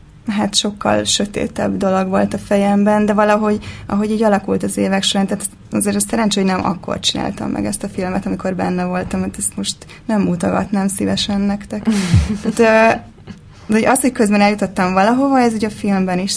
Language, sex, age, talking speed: Hungarian, female, 20-39, 175 wpm